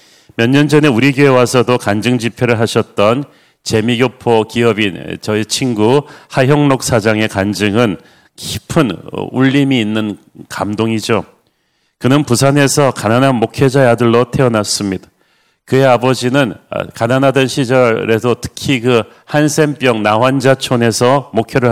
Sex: male